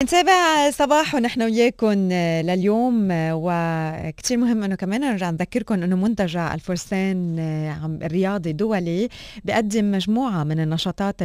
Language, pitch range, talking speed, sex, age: Arabic, 170-205 Hz, 105 wpm, female, 20-39